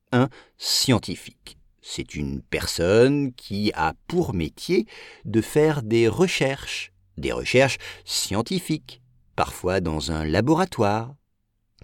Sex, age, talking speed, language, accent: male, 50-69, 100 wpm, English, French